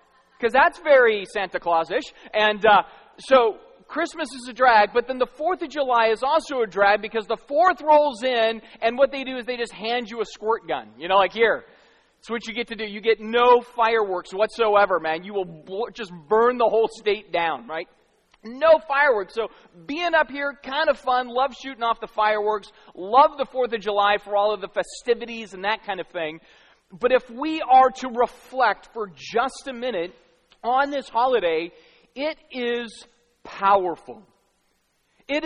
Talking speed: 190 wpm